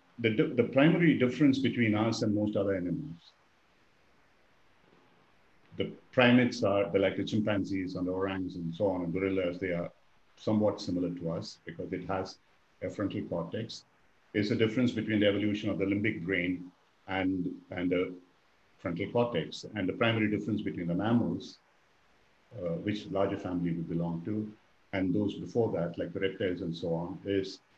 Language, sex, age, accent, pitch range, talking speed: English, male, 50-69, Indian, 90-110 Hz, 165 wpm